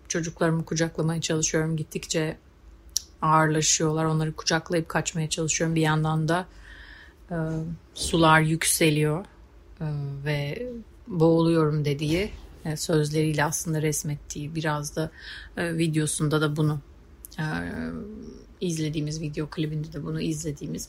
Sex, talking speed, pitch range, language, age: female, 105 wpm, 150-170 Hz, Turkish, 30-49